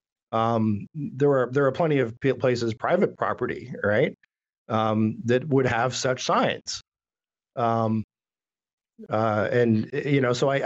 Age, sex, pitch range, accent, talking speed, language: 50-69, male, 120-140 Hz, American, 135 wpm, English